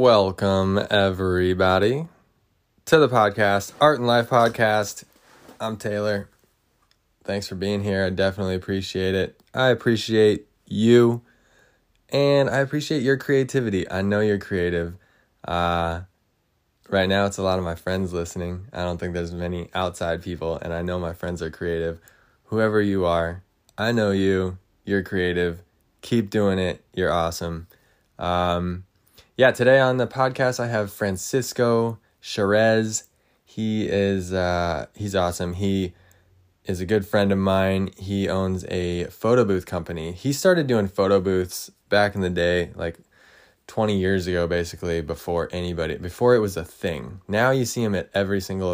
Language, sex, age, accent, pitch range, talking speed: English, male, 20-39, American, 90-110 Hz, 155 wpm